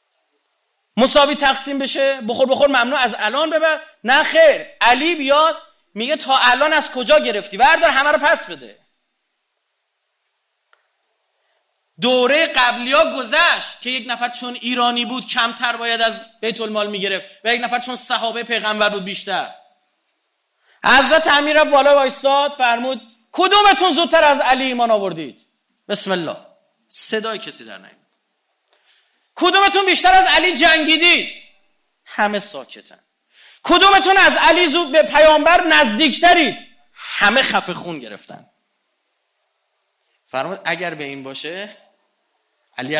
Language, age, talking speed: Persian, 40-59, 125 wpm